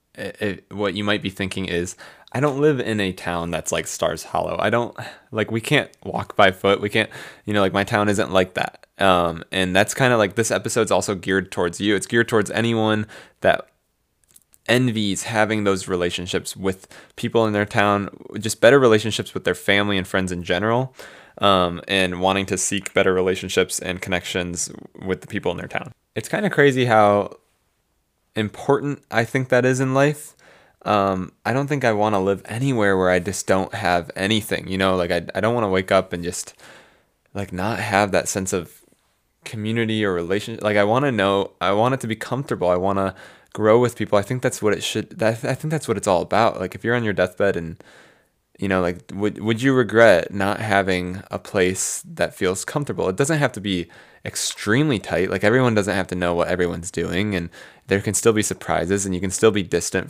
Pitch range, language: 95-110 Hz, English